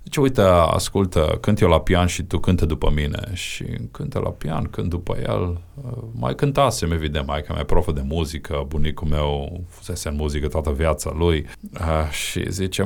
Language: Romanian